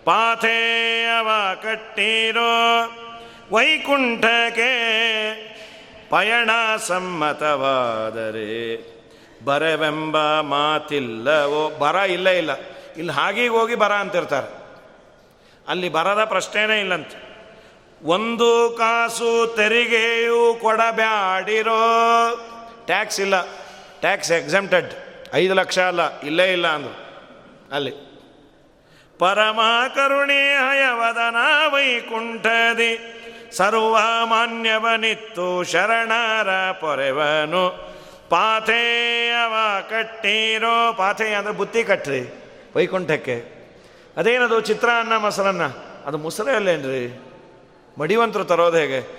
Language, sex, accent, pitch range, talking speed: Kannada, male, native, 180-230 Hz, 70 wpm